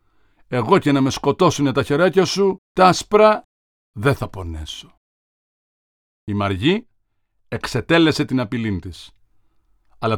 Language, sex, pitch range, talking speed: Greek, male, 110-145 Hz, 120 wpm